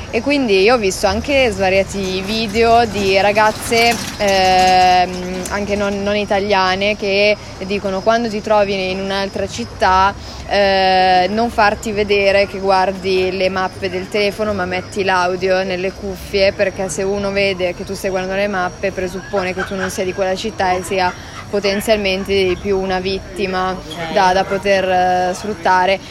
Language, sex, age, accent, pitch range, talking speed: Italian, female, 20-39, native, 190-210 Hz, 155 wpm